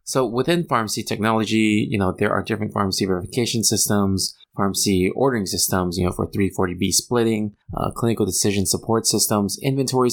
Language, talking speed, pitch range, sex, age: English, 155 wpm, 95-120 Hz, male, 20-39